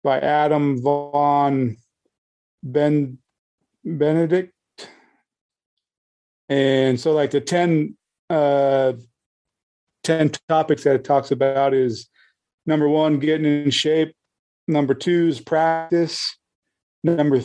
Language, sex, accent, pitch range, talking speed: English, male, American, 135-160 Hz, 95 wpm